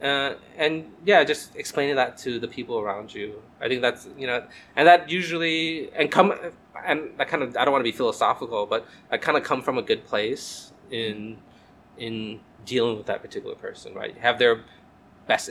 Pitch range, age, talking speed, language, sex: 125-185 Hz, 20-39, 195 wpm, Spanish, male